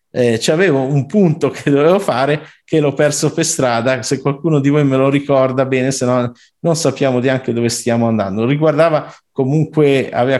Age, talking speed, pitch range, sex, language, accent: 50-69, 180 wpm, 125-180 Hz, male, Italian, native